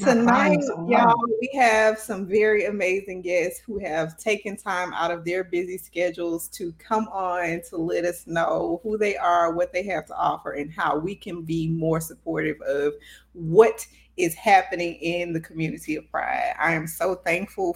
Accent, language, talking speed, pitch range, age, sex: American, English, 175 wpm, 185-255 Hz, 20-39, female